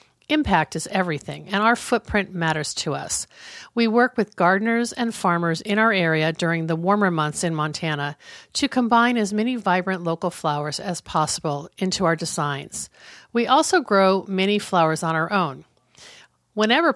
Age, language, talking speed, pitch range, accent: 50-69, English, 160 wpm, 165-210 Hz, American